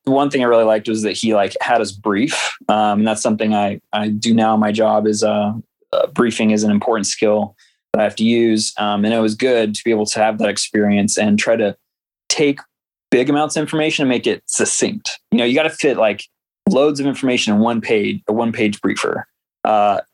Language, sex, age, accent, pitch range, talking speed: English, male, 20-39, American, 105-125 Hz, 230 wpm